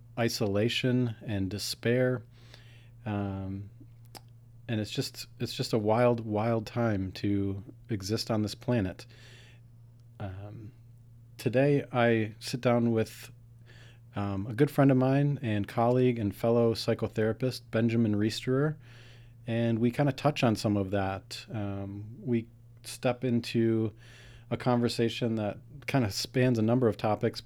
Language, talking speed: English, 130 wpm